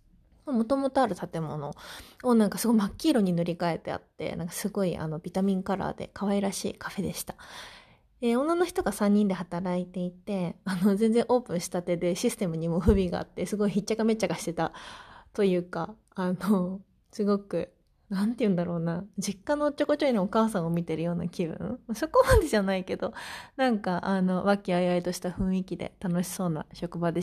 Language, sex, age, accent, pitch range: Japanese, female, 20-39, native, 175-230 Hz